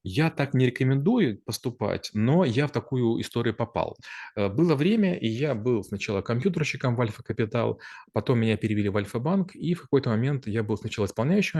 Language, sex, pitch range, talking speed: Russian, male, 110-135 Hz, 170 wpm